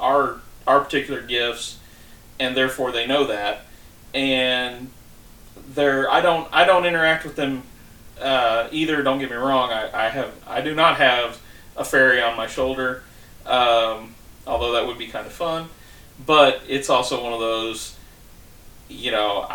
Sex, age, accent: male, 30-49, American